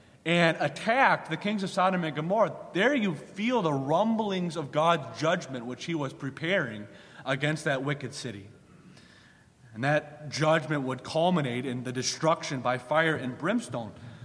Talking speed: 150 wpm